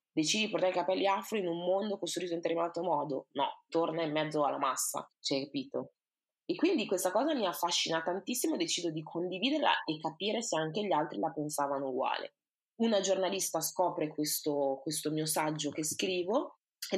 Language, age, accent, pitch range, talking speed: Italian, 20-39, native, 150-180 Hz, 180 wpm